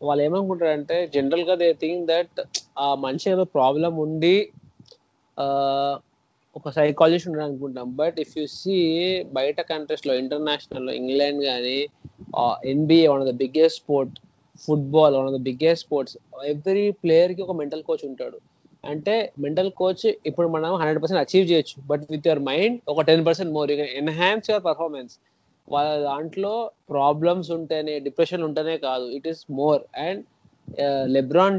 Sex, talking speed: male, 145 wpm